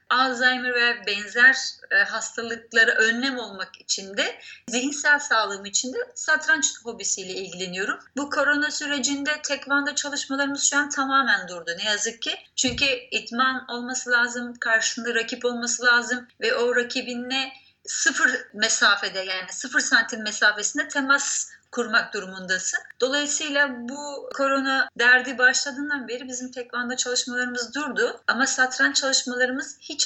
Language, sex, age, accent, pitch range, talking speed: Turkish, female, 30-49, native, 230-275 Hz, 120 wpm